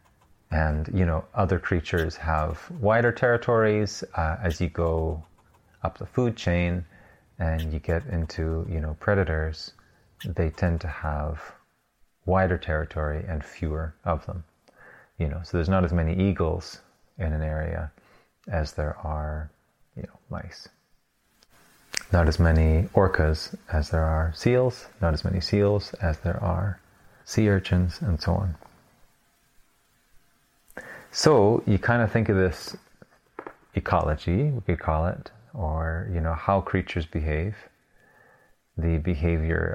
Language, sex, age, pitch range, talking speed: English, male, 30-49, 80-105 Hz, 135 wpm